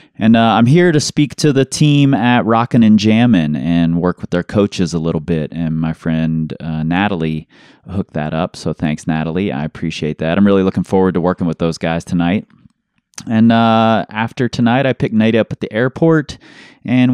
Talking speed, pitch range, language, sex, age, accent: 200 wpm, 85-105 Hz, English, male, 30-49, American